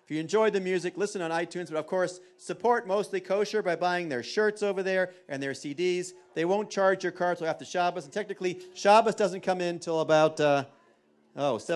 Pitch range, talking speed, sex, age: 140-185 Hz, 210 wpm, male, 40-59